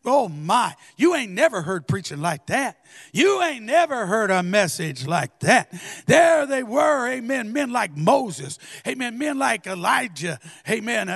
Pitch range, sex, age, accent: 215-295 Hz, male, 50-69, American